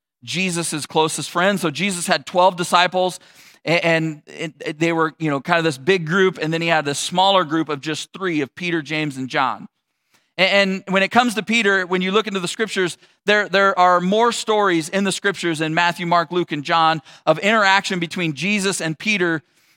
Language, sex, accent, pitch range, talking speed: English, male, American, 155-195 Hz, 195 wpm